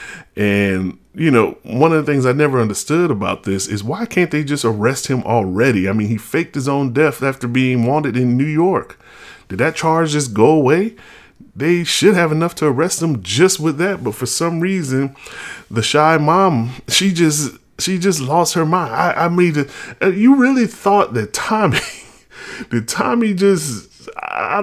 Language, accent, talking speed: English, American, 185 wpm